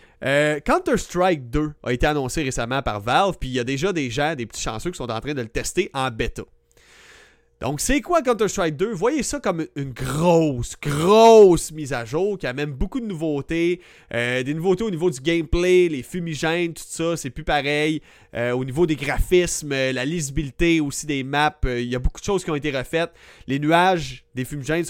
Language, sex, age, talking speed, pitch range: French, male, 30-49, 205 wpm, 135-200 Hz